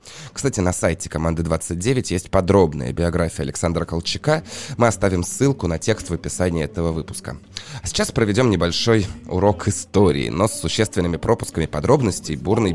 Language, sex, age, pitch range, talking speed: Russian, male, 20-39, 85-120 Hz, 145 wpm